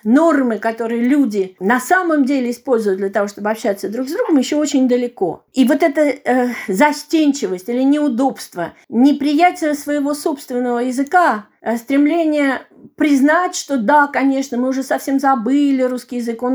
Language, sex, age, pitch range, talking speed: Russian, female, 40-59, 235-290 Hz, 145 wpm